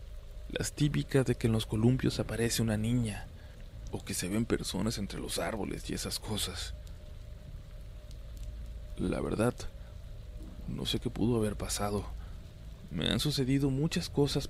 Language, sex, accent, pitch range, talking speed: Spanish, male, Mexican, 90-120 Hz, 140 wpm